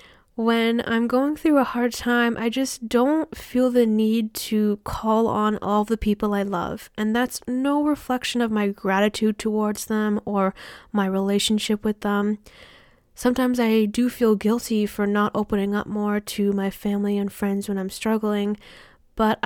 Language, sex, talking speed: English, female, 165 wpm